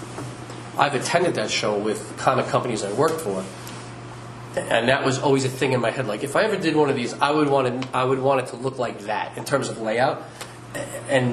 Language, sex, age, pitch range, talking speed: English, male, 40-59, 115-140 Hz, 245 wpm